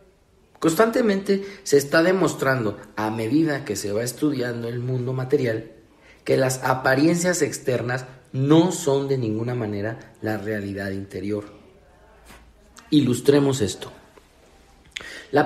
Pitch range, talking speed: 105-140 Hz, 110 wpm